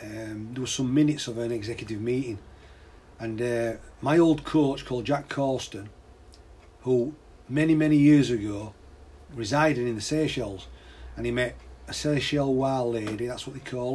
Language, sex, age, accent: English, male, 40-59, British